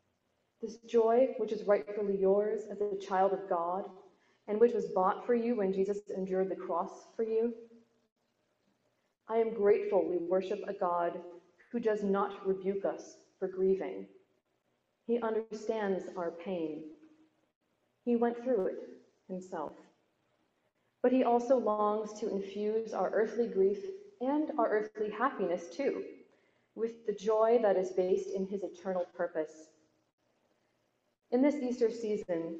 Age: 40-59